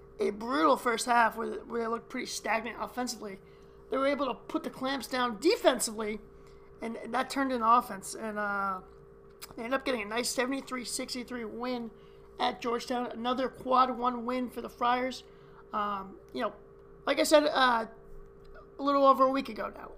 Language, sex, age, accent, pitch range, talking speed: English, male, 40-59, American, 225-270 Hz, 170 wpm